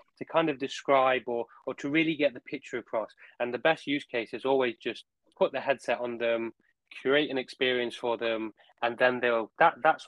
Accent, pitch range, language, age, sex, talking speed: British, 120-135 Hz, English, 20-39, male, 210 wpm